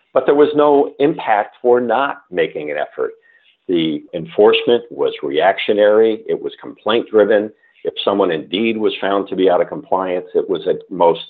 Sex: male